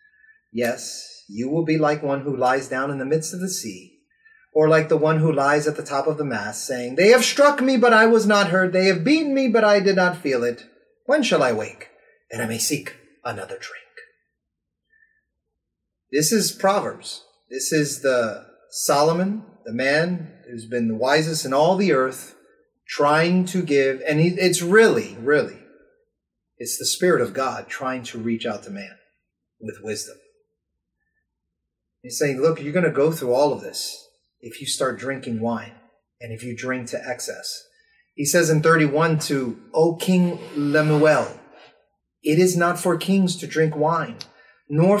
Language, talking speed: English, 175 wpm